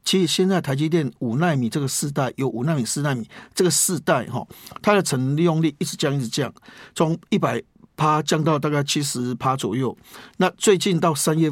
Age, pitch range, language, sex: 50-69, 130-175 Hz, Chinese, male